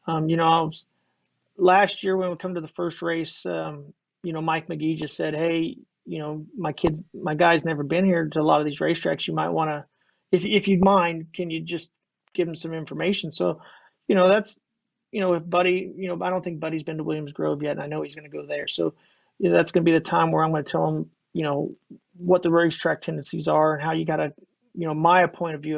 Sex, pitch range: male, 155-175 Hz